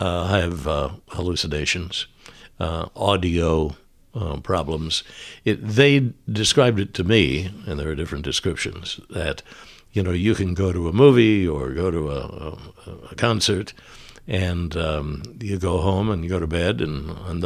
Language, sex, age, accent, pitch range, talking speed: English, male, 60-79, American, 80-105 Hz, 160 wpm